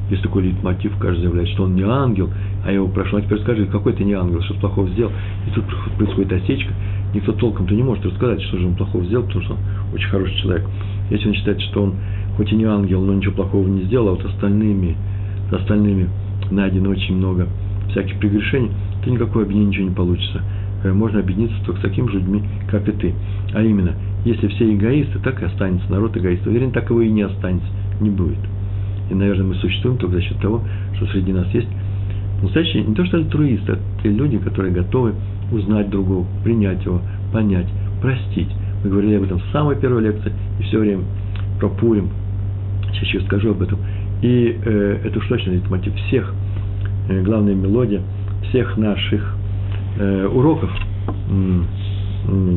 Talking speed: 180 wpm